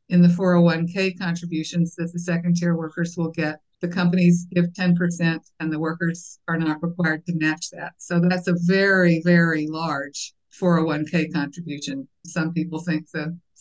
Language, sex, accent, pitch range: English, female, American, 160-180 Hz